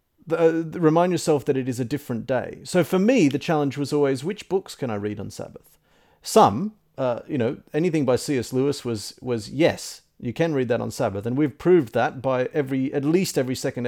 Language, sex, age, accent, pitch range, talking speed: English, male, 40-59, Australian, 125-180 Hz, 210 wpm